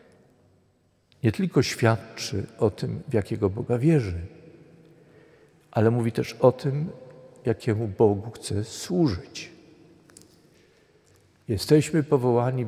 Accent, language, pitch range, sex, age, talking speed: native, Polish, 105-140 Hz, male, 50-69, 95 wpm